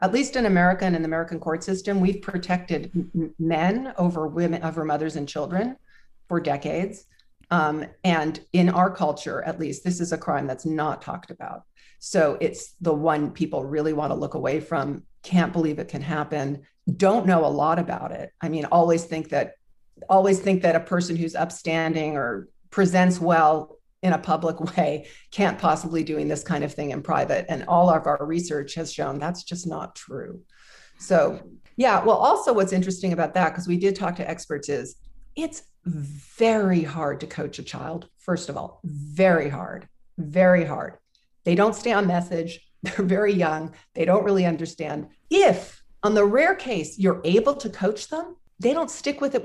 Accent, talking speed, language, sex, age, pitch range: American, 185 wpm, English, female, 50-69, 155-190 Hz